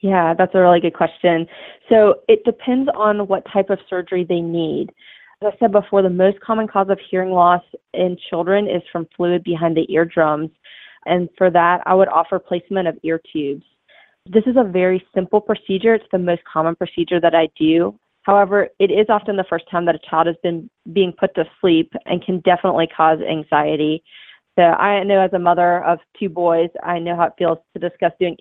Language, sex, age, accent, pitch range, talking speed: English, female, 20-39, American, 165-195 Hz, 205 wpm